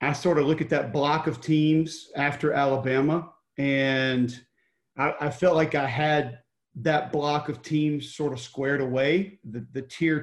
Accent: American